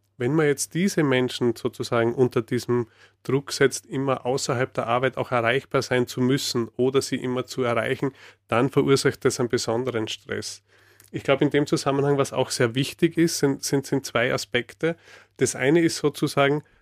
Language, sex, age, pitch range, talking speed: German, male, 30-49, 120-140 Hz, 175 wpm